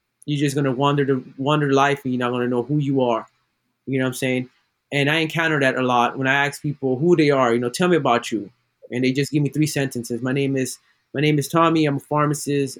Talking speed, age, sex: 270 wpm, 20-39, male